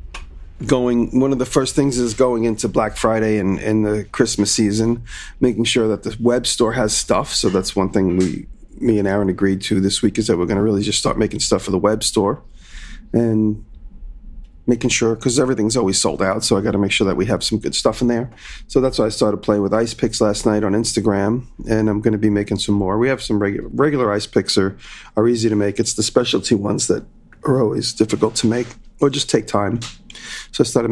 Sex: male